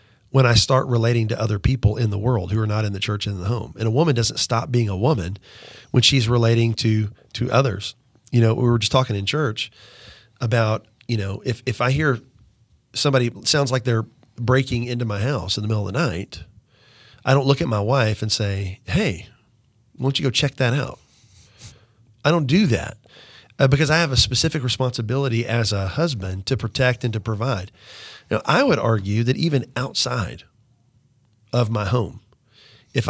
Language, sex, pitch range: English, male, 110-130 Hz